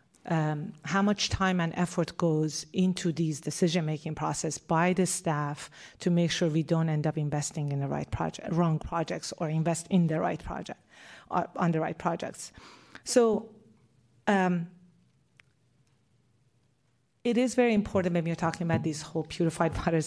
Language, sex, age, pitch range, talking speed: English, female, 40-59, 155-180 Hz, 160 wpm